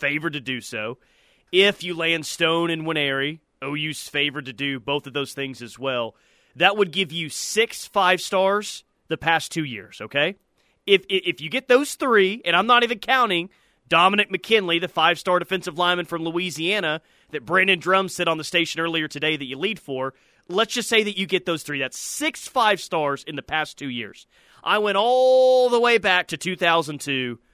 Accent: American